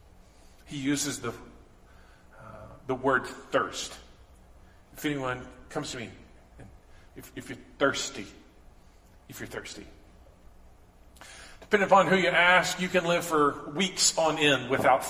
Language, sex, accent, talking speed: English, male, American, 125 wpm